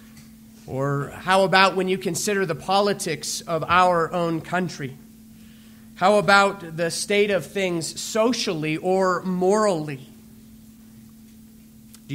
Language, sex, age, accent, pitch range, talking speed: English, male, 30-49, American, 160-205 Hz, 110 wpm